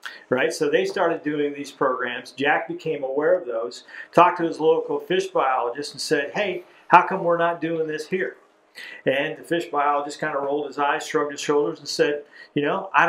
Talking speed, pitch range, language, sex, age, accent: 205 wpm, 130-165 Hz, English, male, 50-69, American